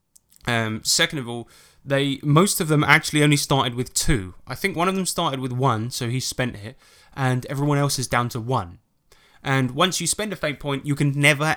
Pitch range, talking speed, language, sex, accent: 120-145 Hz, 220 wpm, English, male, British